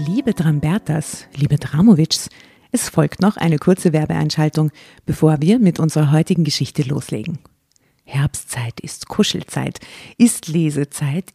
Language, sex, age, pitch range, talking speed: German, female, 50-69, 150-185 Hz, 115 wpm